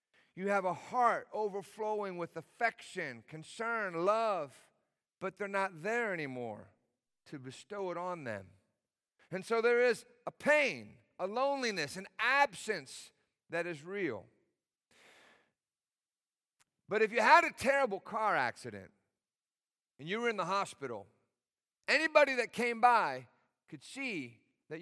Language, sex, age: English, male, 50-69